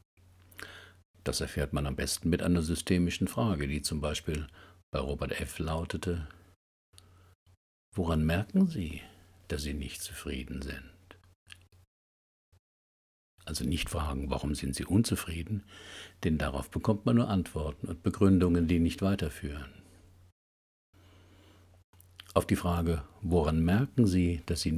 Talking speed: 120 wpm